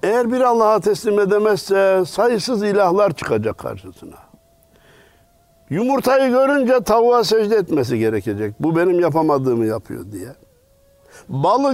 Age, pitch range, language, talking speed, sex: 60-79, 125-205 Hz, Turkish, 105 wpm, male